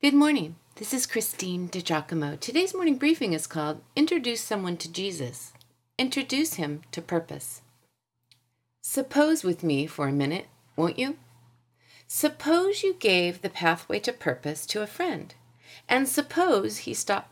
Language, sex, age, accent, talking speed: English, female, 40-59, American, 140 wpm